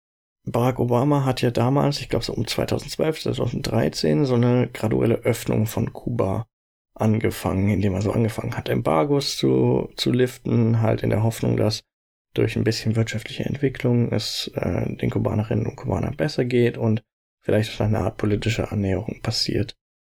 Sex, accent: male, German